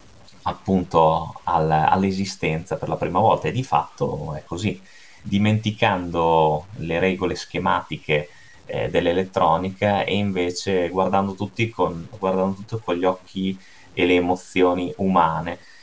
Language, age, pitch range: Italian, 30-49, 80-95 Hz